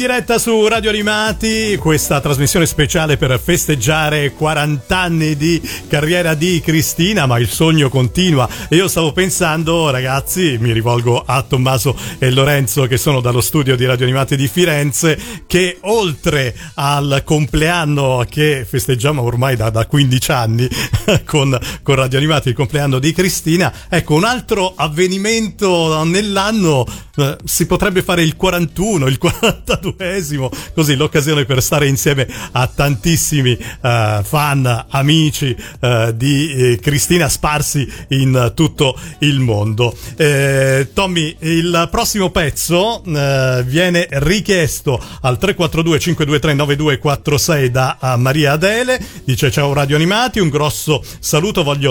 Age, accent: 40-59, native